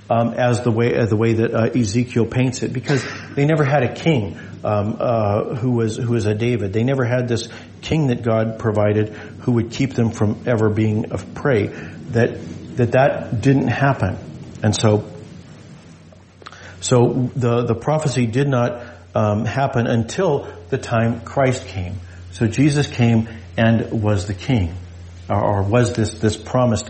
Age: 50-69